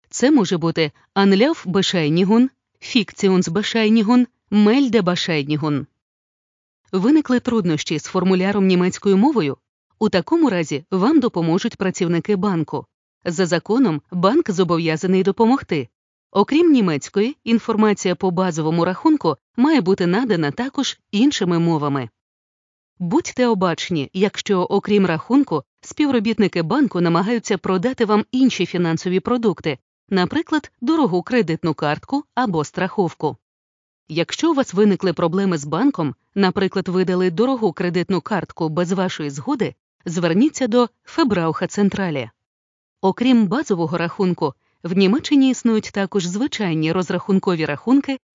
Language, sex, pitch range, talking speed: Ukrainian, female, 170-235 Hz, 105 wpm